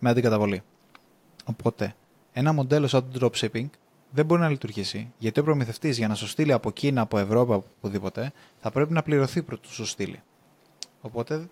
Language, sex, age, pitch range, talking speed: Greek, male, 20-39, 115-155 Hz, 165 wpm